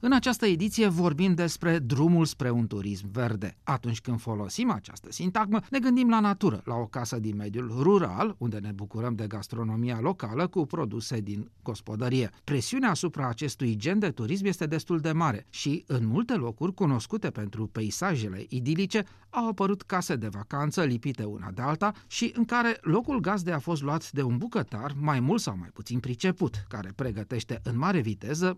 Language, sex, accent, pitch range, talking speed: Romanian, male, native, 115-185 Hz, 175 wpm